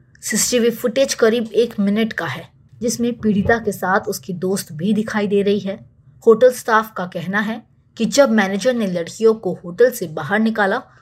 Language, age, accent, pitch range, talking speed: Hindi, 20-39, native, 175-220 Hz, 180 wpm